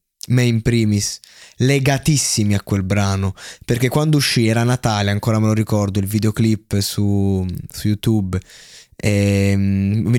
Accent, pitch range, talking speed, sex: native, 100-120 Hz, 135 wpm, male